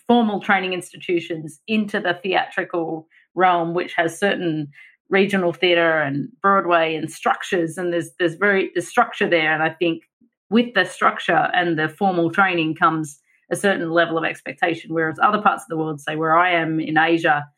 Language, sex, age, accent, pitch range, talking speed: English, female, 30-49, Australian, 165-205 Hz, 175 wpm